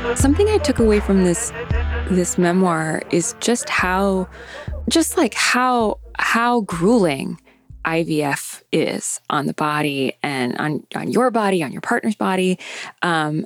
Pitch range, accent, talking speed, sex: 160-210 Hz, American, 140 wpm, female